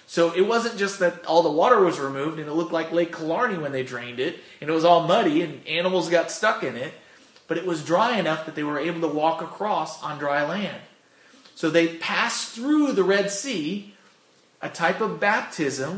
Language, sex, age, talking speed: English, male, 30-49, 215 wpm